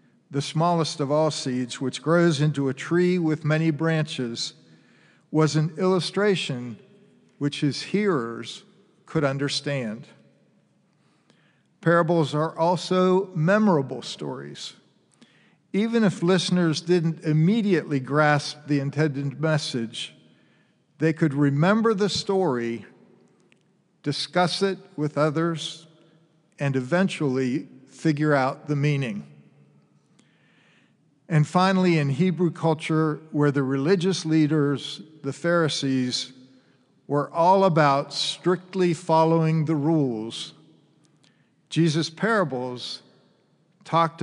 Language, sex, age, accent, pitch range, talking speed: English, male, 50-69, American, 140-175 Hz, 95 wpm